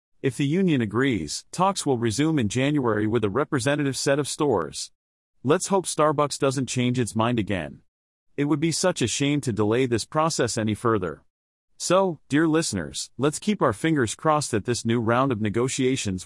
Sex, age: male, 40-59